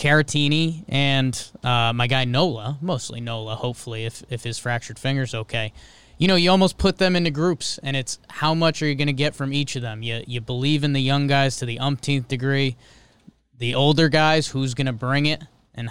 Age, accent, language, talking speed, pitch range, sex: 20-39, American, English, 210 wpm, 120-165 Hz, male